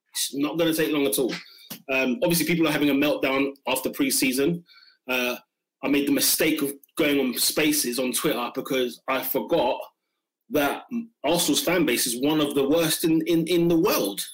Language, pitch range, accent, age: English, 140-175 Hz, British, 20-39